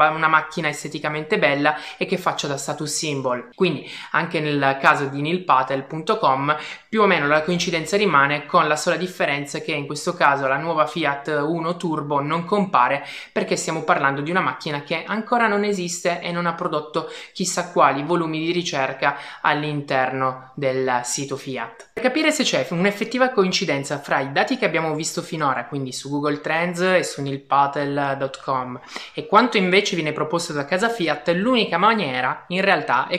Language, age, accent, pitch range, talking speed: Italian, 20-39, native, 140-180 Hz, 170 wpm